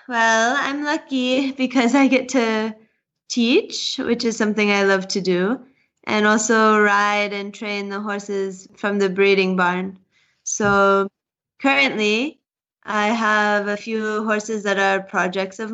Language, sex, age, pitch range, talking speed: English, female, 20-39, 195-220 Hz, 140 wpm